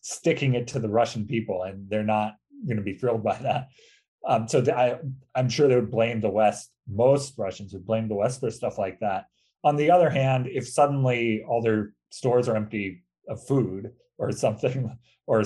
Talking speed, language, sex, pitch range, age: 200 wpm, English, male, 105-130 Hz, 30-49